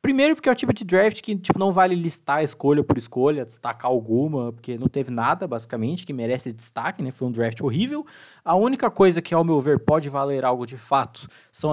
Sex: male